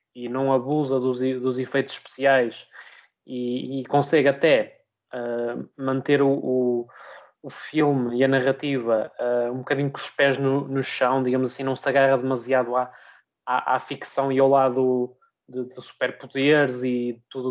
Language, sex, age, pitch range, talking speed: Portuguese, male, 20-39, 130-170 Hz, 150 wpm